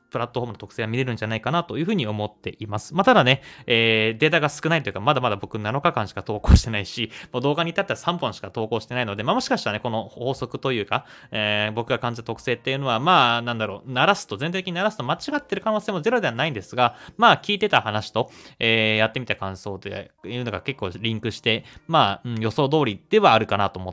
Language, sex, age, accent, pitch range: Japanese, male, 20-39, native, 105-140 Hz